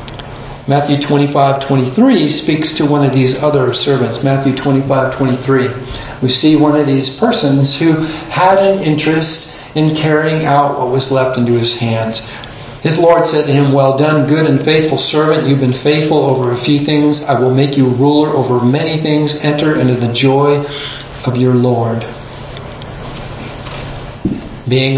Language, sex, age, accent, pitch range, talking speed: English, male, 50-69, American, 130-150 Hz, 160 wpm